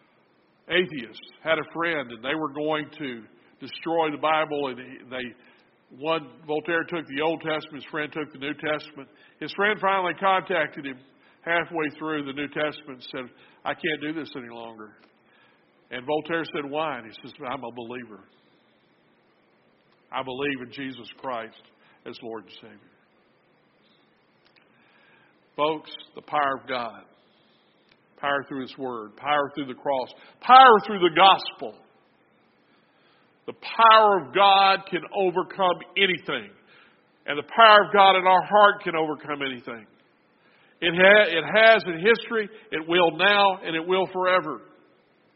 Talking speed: 145 wpm